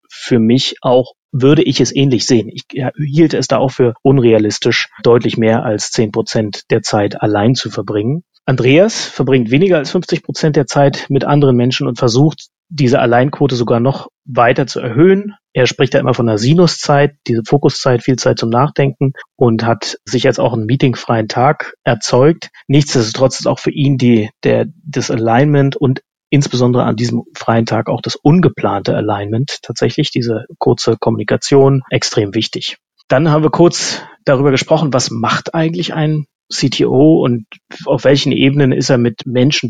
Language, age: German, 30-49